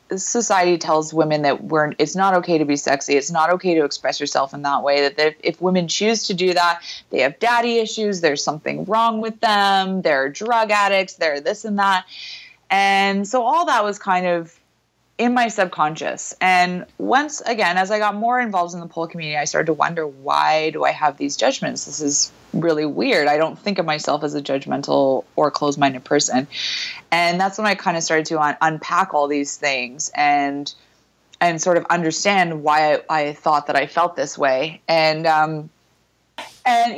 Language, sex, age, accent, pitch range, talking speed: English, female, 20-39, American, 150-195 Hz, 200 wpm